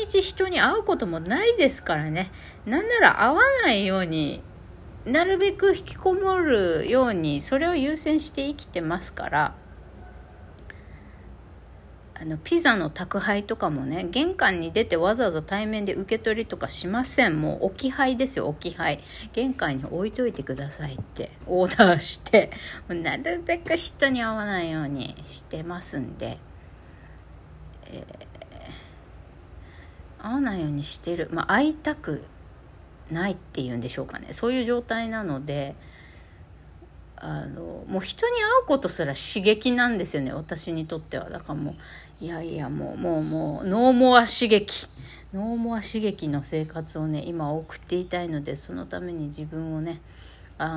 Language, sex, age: Japanese, female, 40-59